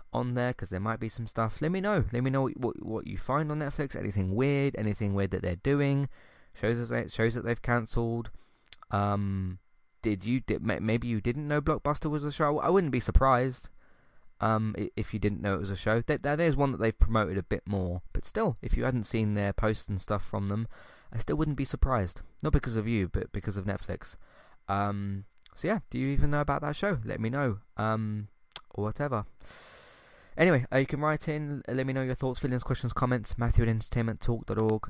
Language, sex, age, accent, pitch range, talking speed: English, male, 20-39, British, 100-130 Hz, 220 wpm